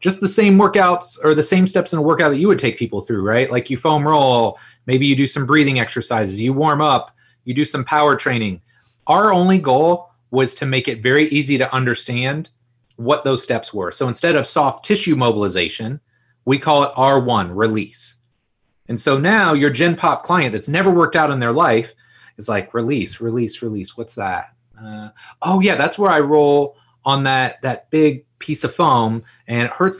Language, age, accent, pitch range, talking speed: English, 30-49, American, 120-150 Hz, 200 wpm